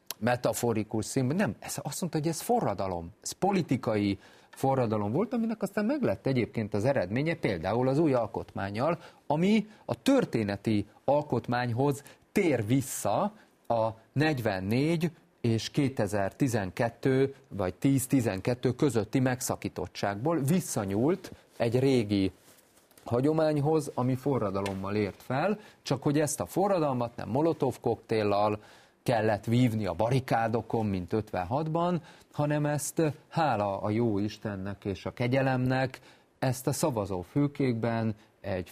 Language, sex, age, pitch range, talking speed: Hungarian, male, 40-59, 105-140 Hz, 110 wpm